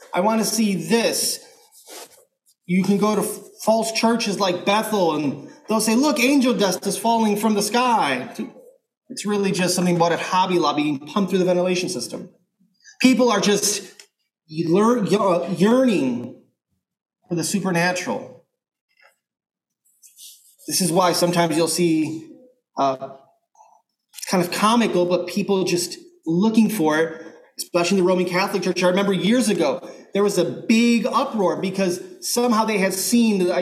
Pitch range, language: 185-250 Hz, English